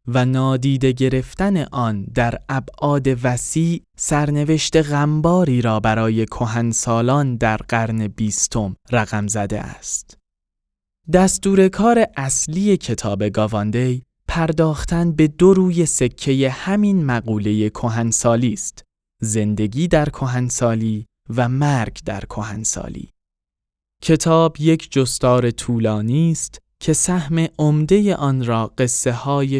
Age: 20-39